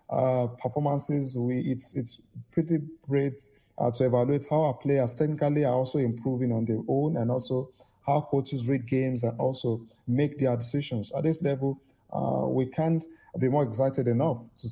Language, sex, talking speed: English, male, 170 wpm